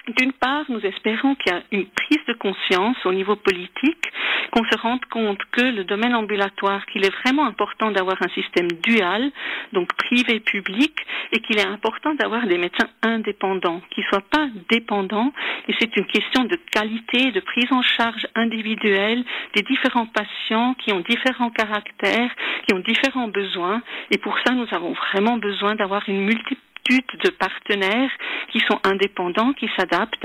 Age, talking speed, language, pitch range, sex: 50-69, 165 wpm, French, 195-245 Hz, female